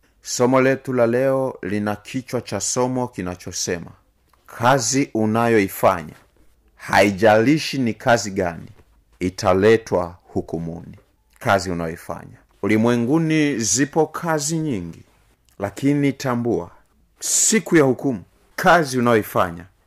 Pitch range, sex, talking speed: 95-135 Hz, male, 90 wpm